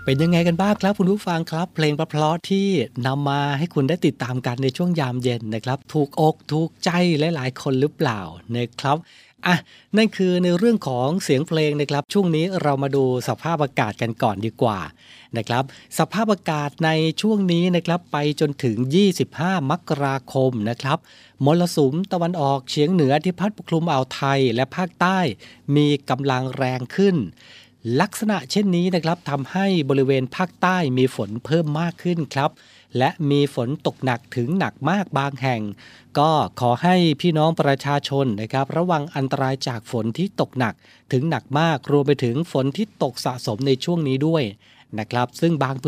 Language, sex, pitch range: Thai, male, 130-170 Hz